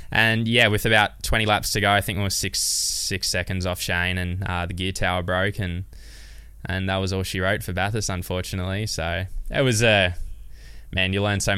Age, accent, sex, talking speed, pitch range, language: 10-29, Australian, male, 220 wpm, 90-105 Hz, English